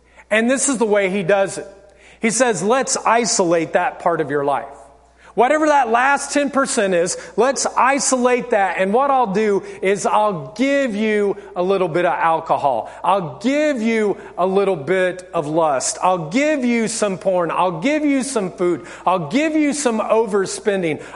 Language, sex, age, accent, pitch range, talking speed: English, male, 40-59, American, 190-255 Hz, 175 wpm